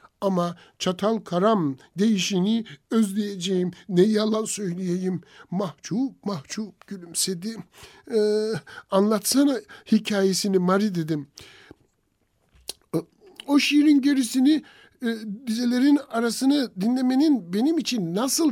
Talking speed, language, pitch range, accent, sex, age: 85 wpm, Turkish, 195-270 Hz, native, male, 60-79